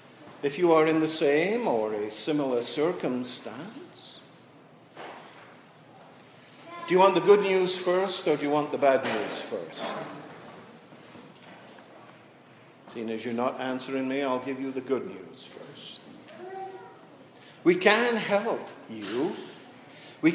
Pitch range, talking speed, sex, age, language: 165-225 Hz, 125 wpm, male, 50-69, English